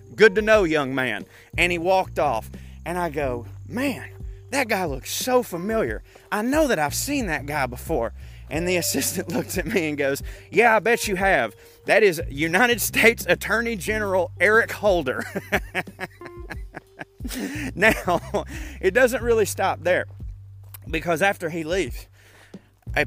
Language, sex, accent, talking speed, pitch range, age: English, male, American, 150 wpm, 125-180 Hz, 30-49